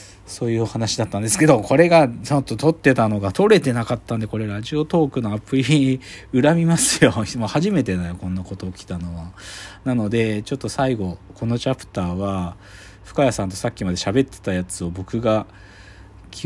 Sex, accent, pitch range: male, native, 90-115 Hz